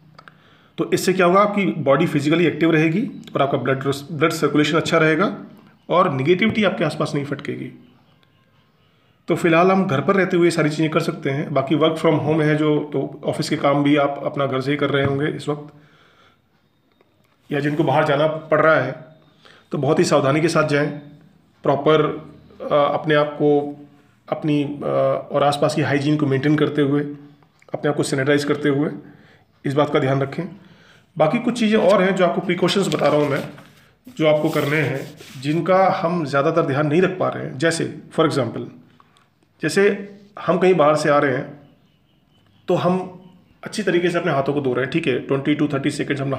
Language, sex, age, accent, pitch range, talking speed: Hindi, male, 40-59, native, 145-170 Hz, 190 wpm